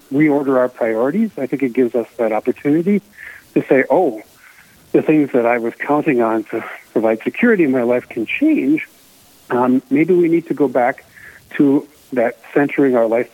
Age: 60-79